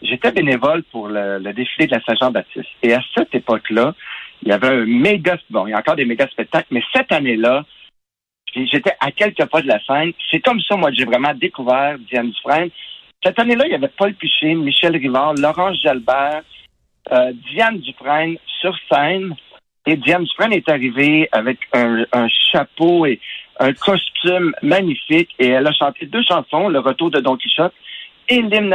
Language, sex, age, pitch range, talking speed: French, male, 60-79, 130-170 Hz, 190 wpm